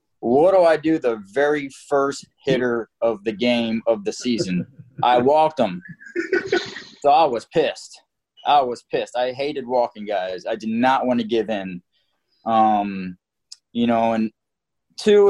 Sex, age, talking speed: male, 20-39, 155 wpm